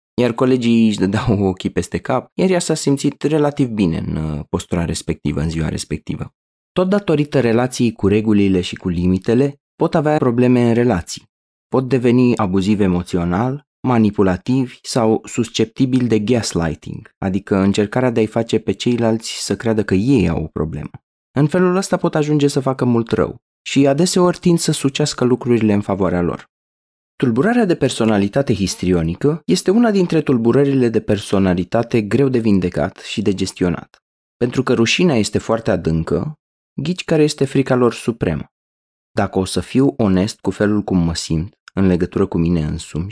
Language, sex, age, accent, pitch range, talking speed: Romanian, male, 20-39, native, 95-140 Hz, 160 wpm